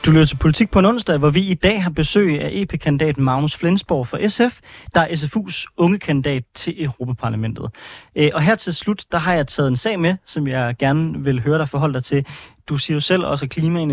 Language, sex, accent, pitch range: Danish, male, native, 130-170 Hz